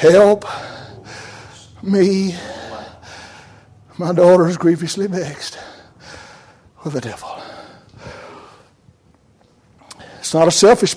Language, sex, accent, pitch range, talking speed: English, male, American, 145-190 Hz, 75 wpm